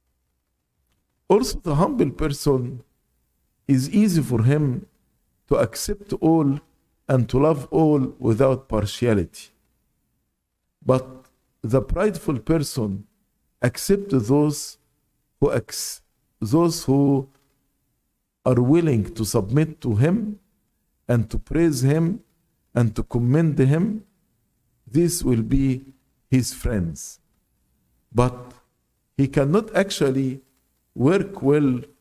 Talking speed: 95 wpm